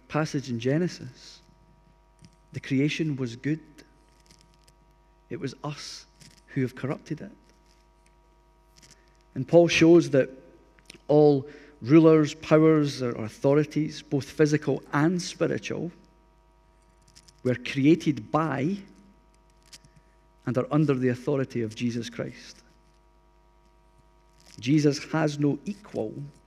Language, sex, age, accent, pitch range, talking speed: English, male, 50-69, British, 125-160 Hz, 95 wpm